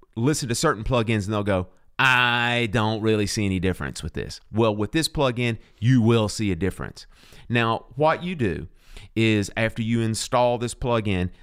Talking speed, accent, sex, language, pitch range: 180 wpm, American, male, English, 105-145 Hz